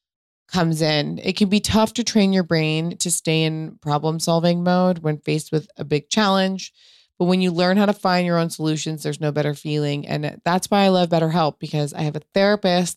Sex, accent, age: female, American, 20-39